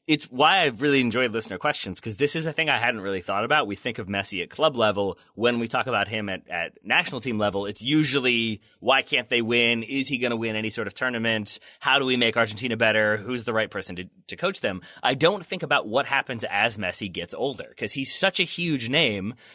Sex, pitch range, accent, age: male, 105-145 Hz, American, 30-49